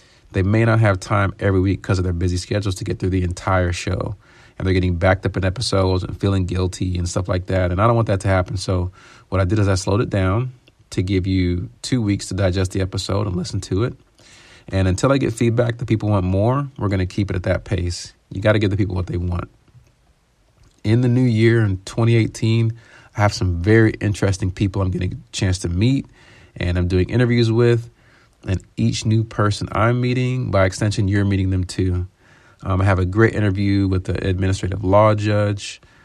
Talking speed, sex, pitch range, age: 220 wpm, male, 95-110 Hz, 40-59